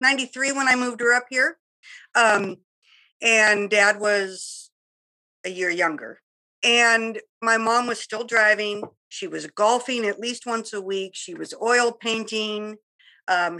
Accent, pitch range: American, 205-245 Hz